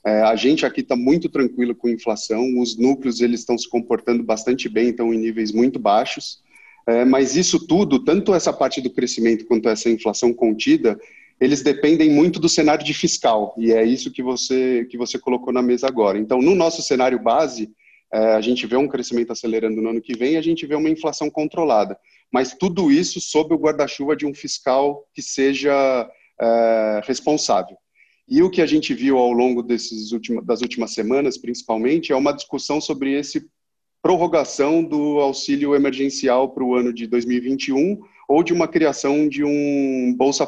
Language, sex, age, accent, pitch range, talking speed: Portuguese, male, 30-49, Brazilian, 115-145 Hz, 180 wpm